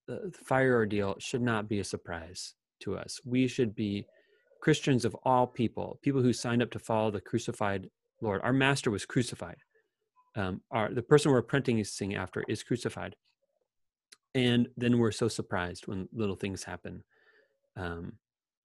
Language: English